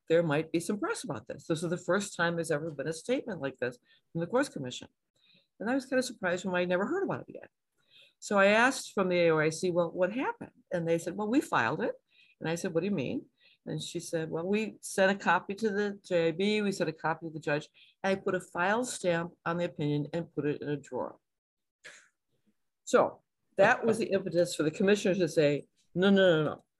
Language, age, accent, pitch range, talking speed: English, 50-69, American, 160-195 Hz, 235 wpm